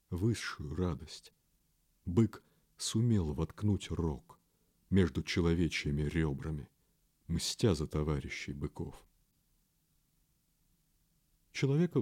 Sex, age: male, 50-69